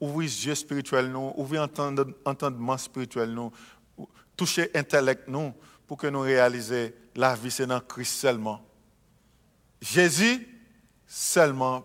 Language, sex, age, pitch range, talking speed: English, male, 50-69, 135-160 Hz, 130 wpm